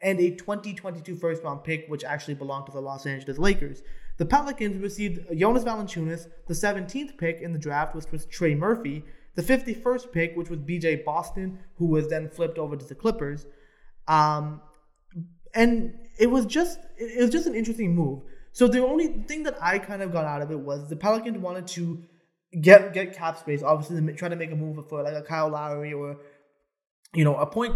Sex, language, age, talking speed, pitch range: male, English, 20-39, 190 wpm, 150-200 Hz